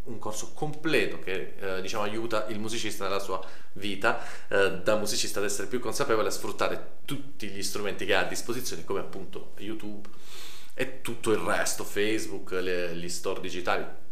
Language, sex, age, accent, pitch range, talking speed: Italian, male, 30-49, native, 110-145 Hz, 170 wpm